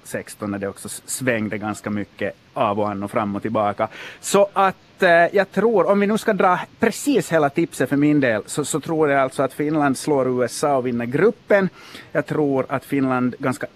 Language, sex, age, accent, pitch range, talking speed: Swedish, male, 30-49, Finnish, 110-150 Hz, 205 wpm